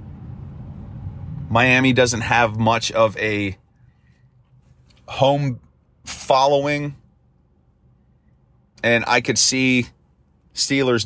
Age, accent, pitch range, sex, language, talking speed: 40-59, American, 115-135 Hz, male, English, 70 wpm